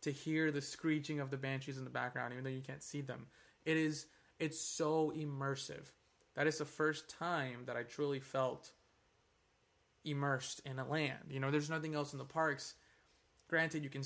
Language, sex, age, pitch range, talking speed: English, male, 20-39, 135-155 Hz, 190 wpm